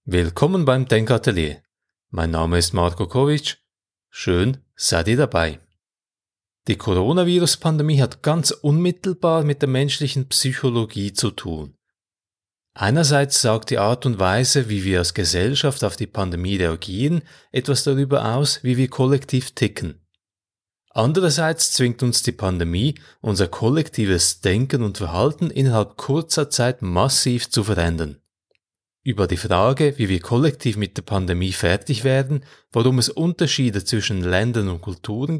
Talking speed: 130 wpm